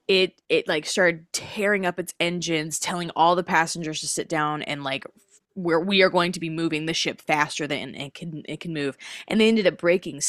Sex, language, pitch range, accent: female, English, 155-185 Hz, American